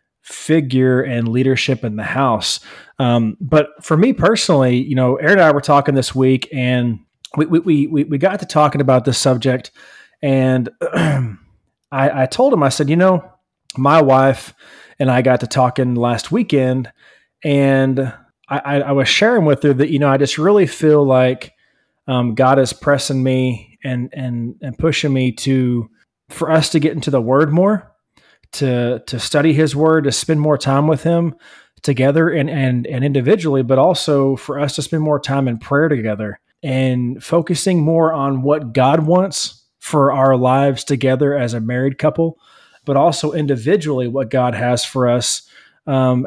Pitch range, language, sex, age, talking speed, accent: 130-155 Hz, English, male, 30-49, 175 wpm, American